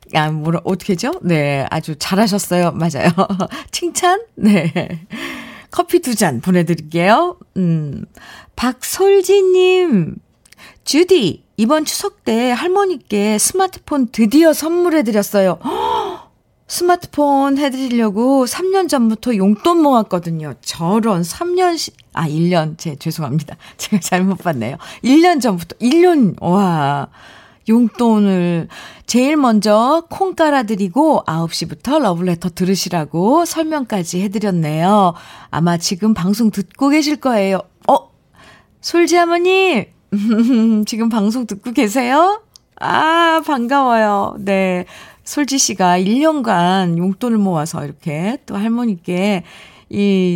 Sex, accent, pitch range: female, native, 180-295 Hz